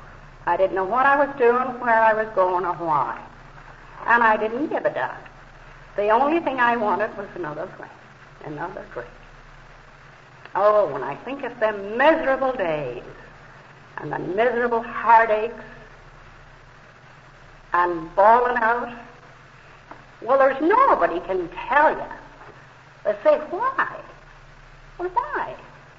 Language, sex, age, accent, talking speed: English, female, 60-79, American, 125 wpm